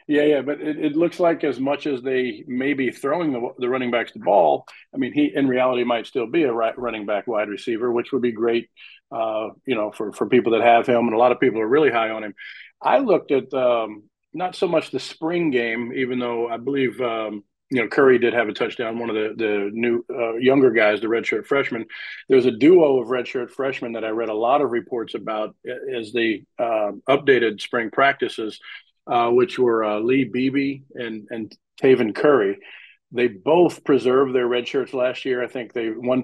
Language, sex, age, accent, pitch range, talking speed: English, male, 40-59, American, 115-135 Hz, 215 wpm